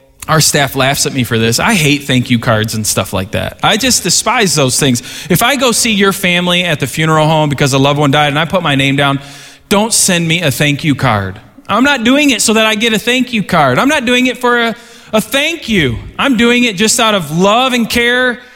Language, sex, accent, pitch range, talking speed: English, male, American, 135-205 Hz, 255 wpm